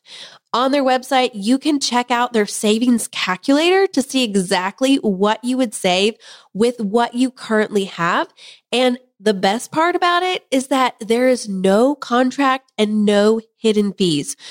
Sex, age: female, 20-39